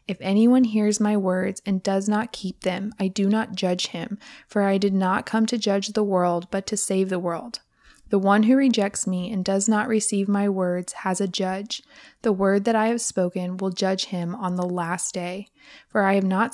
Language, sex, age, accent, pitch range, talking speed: English, female, 20-39, American, 185-215 Hz, 220 wpm